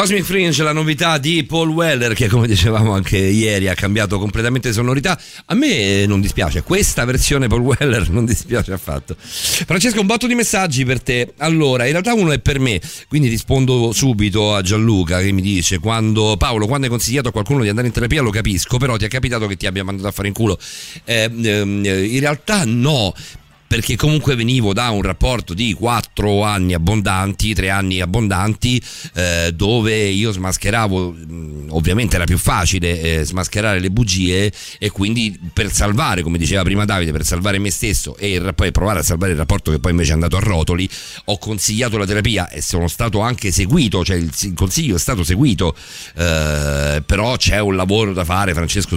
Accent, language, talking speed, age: native, Italian, 185 wpm, 40-59